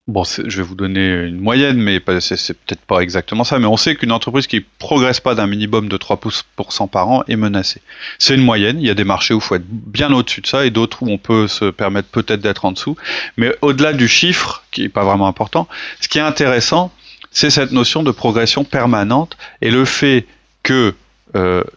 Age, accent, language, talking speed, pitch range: 30-49, French, French, 225 wpm, 110-140 Hz